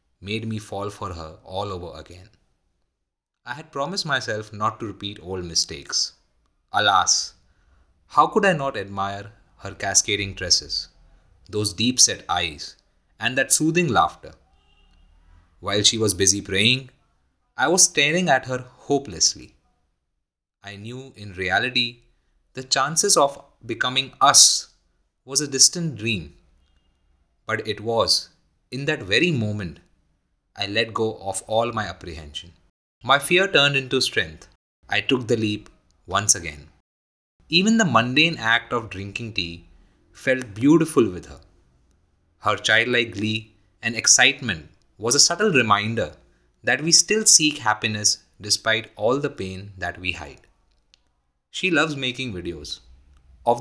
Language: English